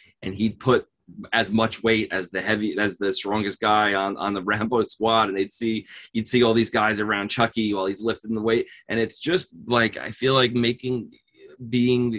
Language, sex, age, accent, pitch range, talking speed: English, male, 20-39, American, 100-120 Hz, 205 wpm